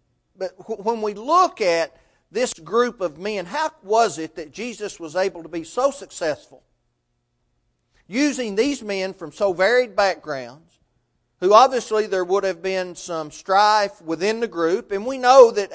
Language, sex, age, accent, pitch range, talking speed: English, male, 40-59, American, 140-215 Hz, 160 wpm